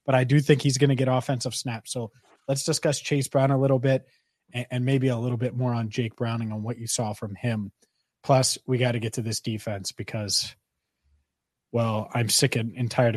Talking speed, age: 215 wpm, 30-49